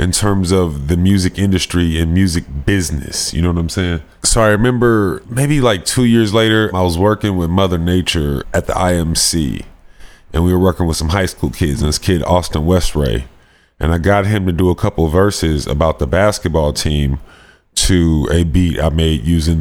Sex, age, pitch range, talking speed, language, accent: male, 30-49, 75-90 Hz, 195 wpm, English, American